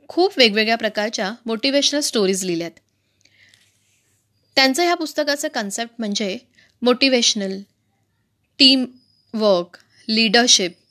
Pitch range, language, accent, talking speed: 185-270 Hz, Marathi, native, 65 wpm